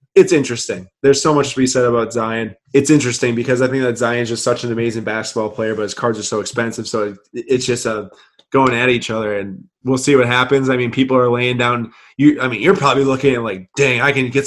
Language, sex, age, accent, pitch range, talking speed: English, male, 20-39, American, 120-140 Hz, 260 wpm